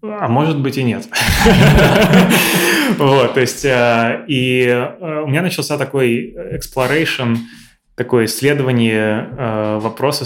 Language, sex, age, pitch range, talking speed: Russian, male, 20-39, 115-135 Hz, 95 wpm